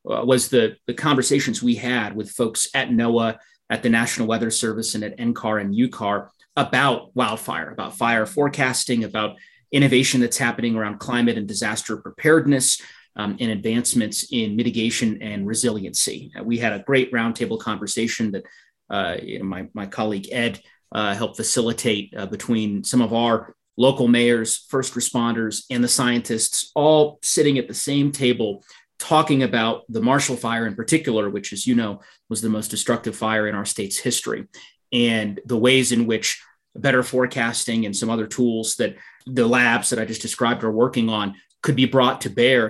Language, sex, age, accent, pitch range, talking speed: English, male, 30-49, American, 110-130 Hz, 170 wpm